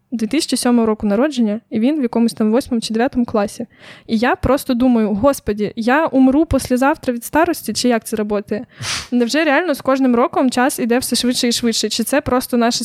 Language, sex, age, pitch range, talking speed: Ukrainian, female, 20-39, 235-265 Hz, 190 wpm